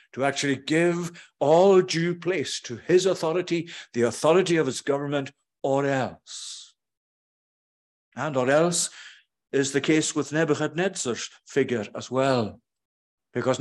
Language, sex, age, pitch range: English, male, 60-79, 125-160 Hz